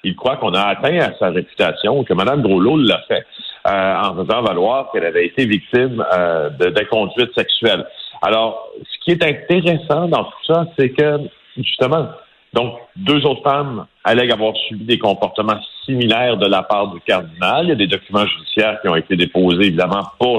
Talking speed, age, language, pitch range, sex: 185 wpm, 50-69, French, 100-130 Hz, male